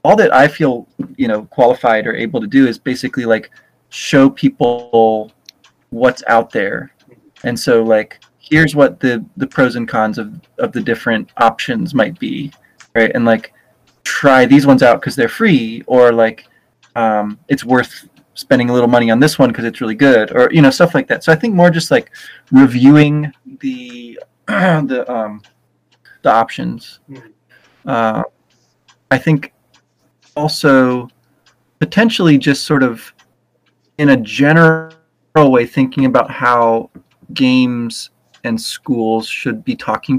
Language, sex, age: English, male, 30-49